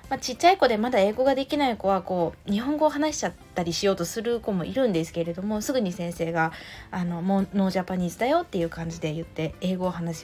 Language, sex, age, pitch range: Japanese, female, 20-39, 170-255 Hz